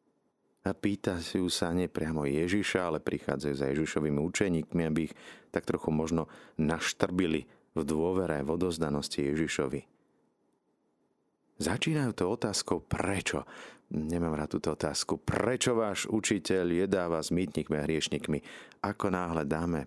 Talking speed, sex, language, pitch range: 120 wpm, male, Slovak, 80-95 Hz